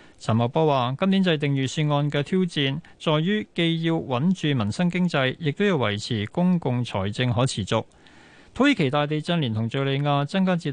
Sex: male